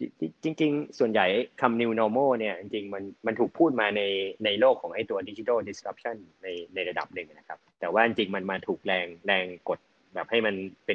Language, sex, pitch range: Thai, male, 105-135 Hz